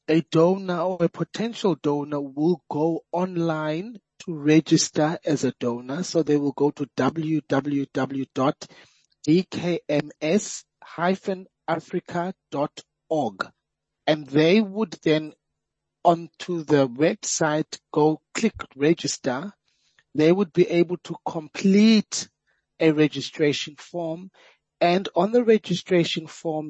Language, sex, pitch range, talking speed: English, male, 145-175 Hz, 100 wpm